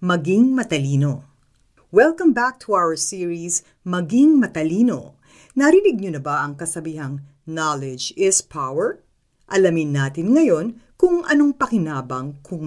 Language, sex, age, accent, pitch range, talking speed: Filipino, female, 50-69, native, 145-225 Hz, 120 wpm